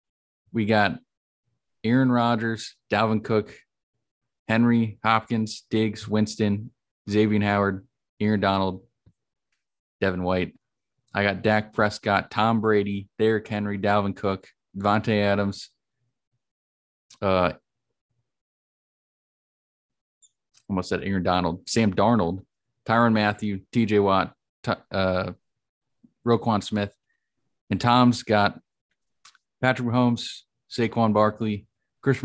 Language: English